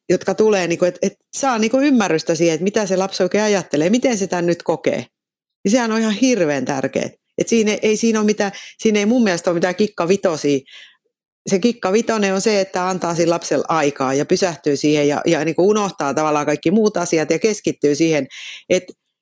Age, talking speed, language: 40-59, 180 wpm, Finnish